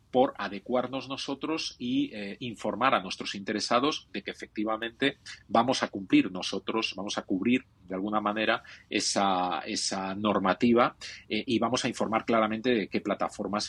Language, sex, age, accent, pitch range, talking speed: Spanish, male, 40-59, Spanish, 100-130 Hz, 150 wpm